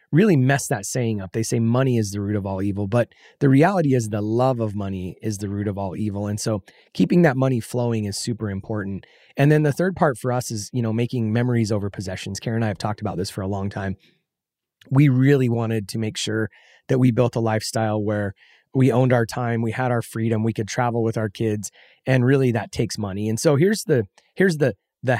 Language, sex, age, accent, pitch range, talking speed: English, male, 30-49, American, 110-125 Hz, 240 wpm